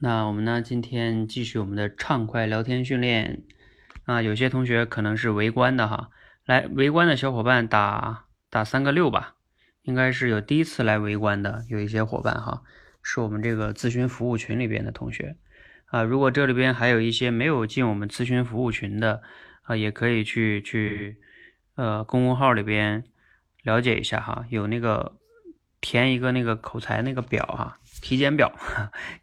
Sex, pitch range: male, 110-125 Hz